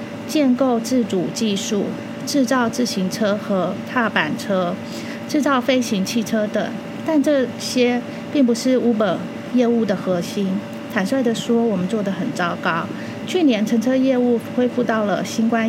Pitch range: 210-260 Hz